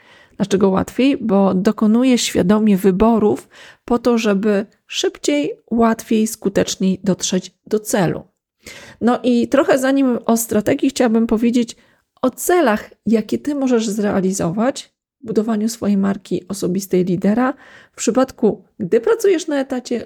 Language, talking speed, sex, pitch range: Polish, 125 wpm, female, 200-245 Hz